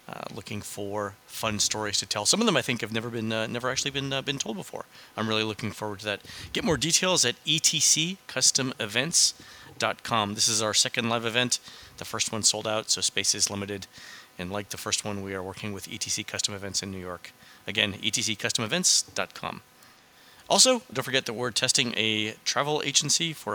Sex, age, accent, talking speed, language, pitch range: male, 30-49, American, 190 wpm, English, 105-125 Hz